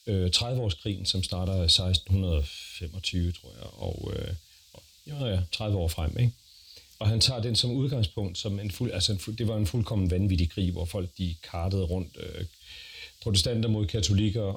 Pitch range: 90-110 Hz